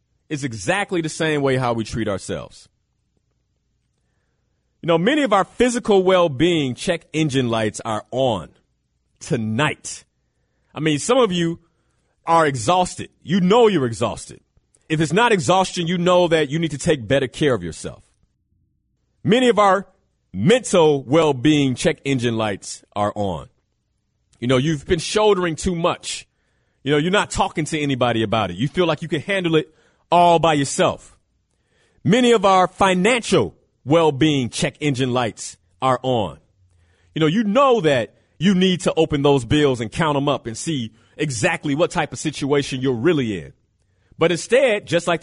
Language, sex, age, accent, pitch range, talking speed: English, male, 40-59, American, 125-180 Hz, 165 wpm